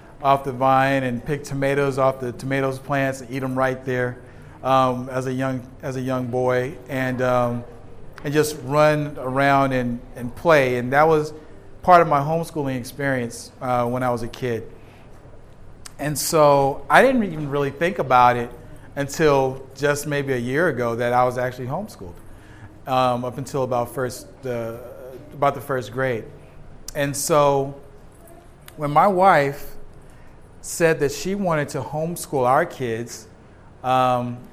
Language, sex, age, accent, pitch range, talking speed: English, male, 40-59, American, 120-145 Hz, 155 wpm